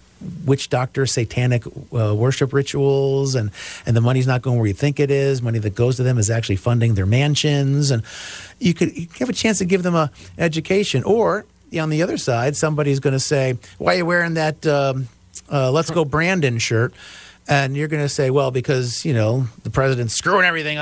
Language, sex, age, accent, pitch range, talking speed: English, male, 40-59, American, 120-150 Hz, 210 wpm